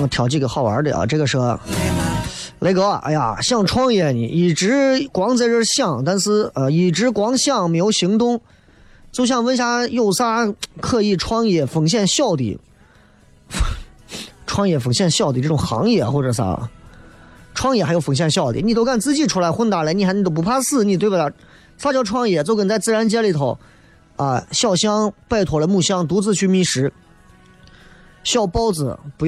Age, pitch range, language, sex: 20-39, 135-205 Hz, Chinese, male